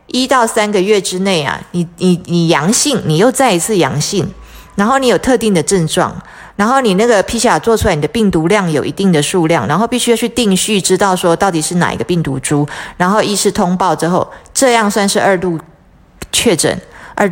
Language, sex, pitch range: Chinese, female, 165-220 Hz